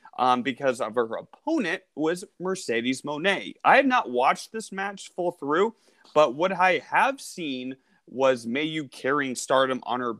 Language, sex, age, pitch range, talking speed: English, male, 30-49, 130-190 Hz, 165 wpm